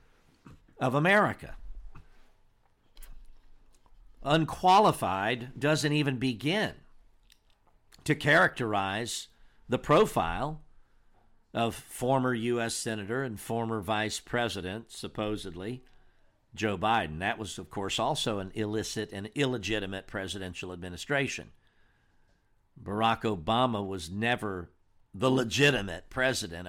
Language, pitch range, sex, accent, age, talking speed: English, 100-130 Hz, male, American, 50-69, 90 wpm